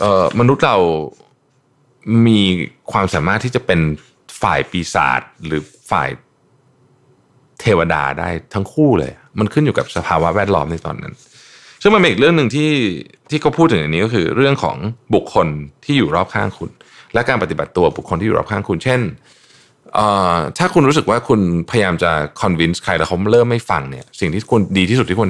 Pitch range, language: 80-125 Hz, Thai